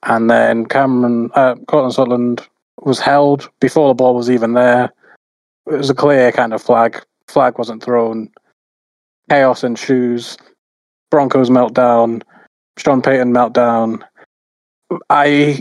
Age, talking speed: 20-39, 125 wpm